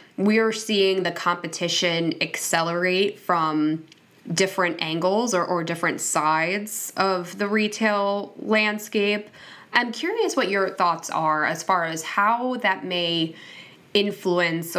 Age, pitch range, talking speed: 10-29, 165-200 Hz, 120 wpm